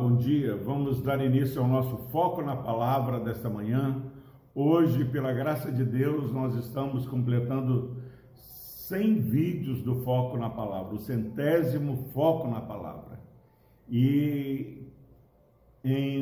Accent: Brazilian